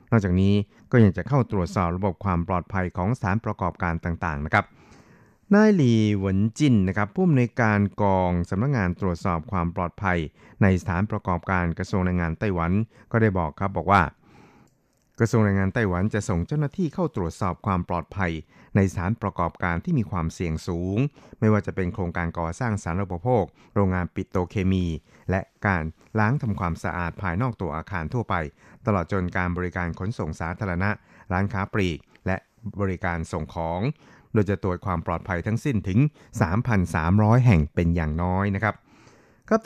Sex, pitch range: male, 90-110 Hz